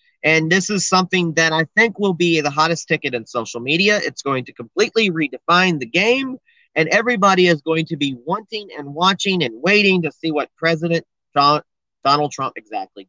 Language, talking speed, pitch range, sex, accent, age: English, 185 wpm, 145-190 Hz, male, American, 40-59